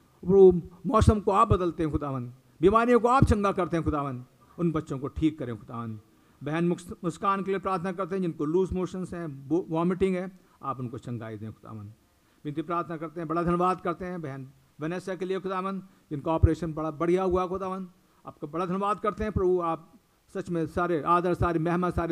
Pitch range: 155-200 Hz